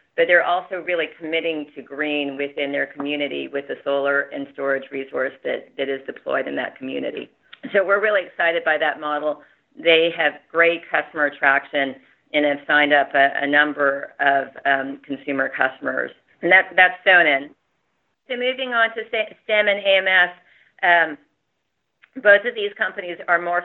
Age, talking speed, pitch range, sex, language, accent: 40-59, 160 wpm, 150-200 Hz, female, English, American